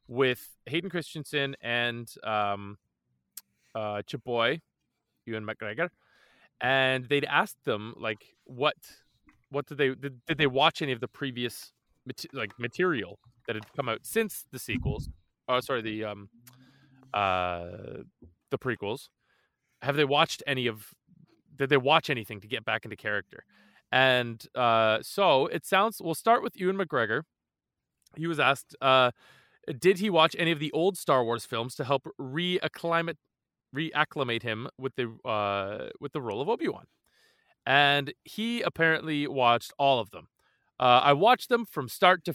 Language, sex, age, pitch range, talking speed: English, male, 20-39, 115-155 Hz, 155 wpm